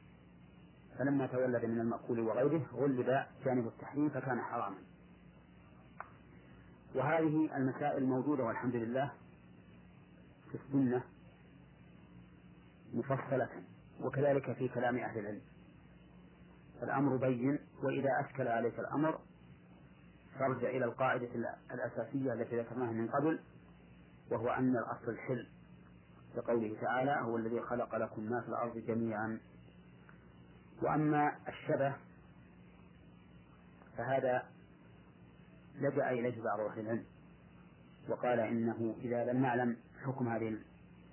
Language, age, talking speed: Arabic, 40-59, 95 wpm